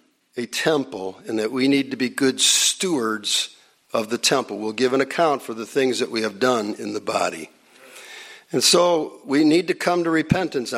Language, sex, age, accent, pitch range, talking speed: English, male, 50-69, American, 120-165 Hz, 195 wpm